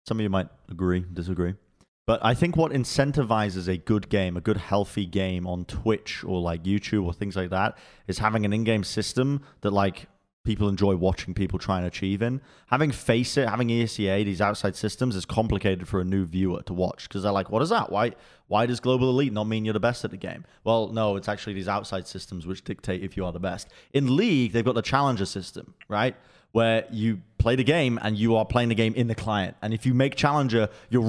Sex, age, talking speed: male, 20-39, 230 wpm